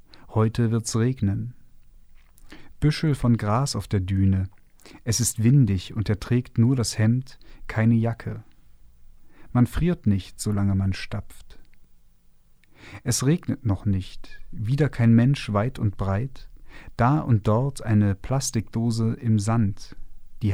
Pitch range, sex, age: 100-125 Hz, male, 40-59